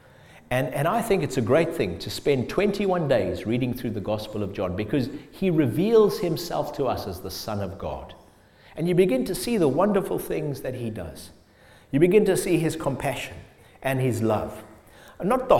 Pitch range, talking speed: 115-190 Hz, 195 wpm